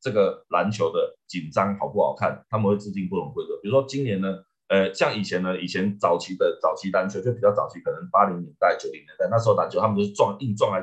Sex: male